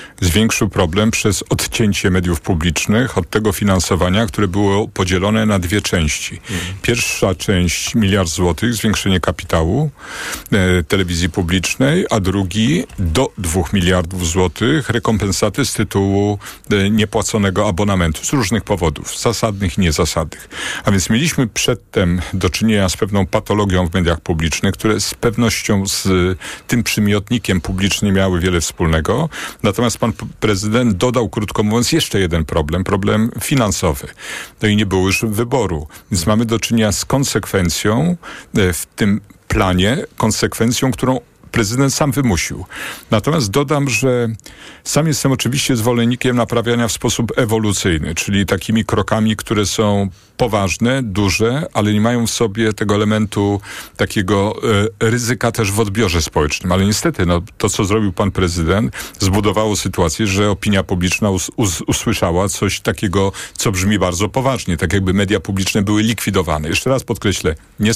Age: 40-59